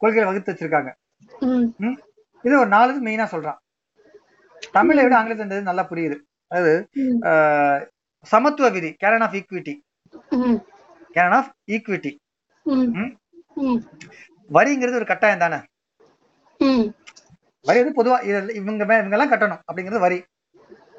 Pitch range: 185-255 Hz